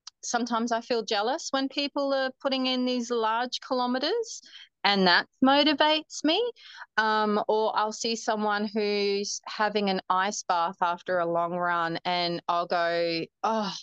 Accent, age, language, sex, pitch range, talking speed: Australian, 30-49, English, female, 175-230 Hz, 150 wpm